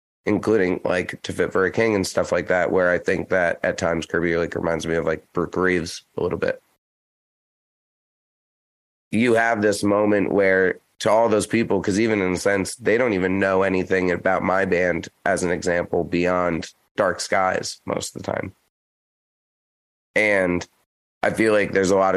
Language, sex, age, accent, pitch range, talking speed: English, male, 30-49, American, 90-115 Hz, 180 wpm